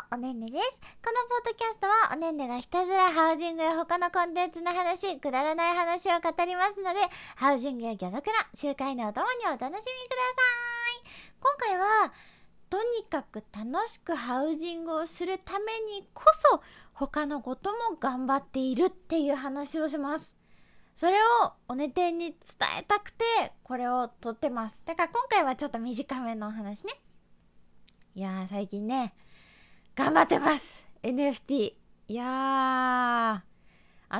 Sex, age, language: female, 20-39, Japanese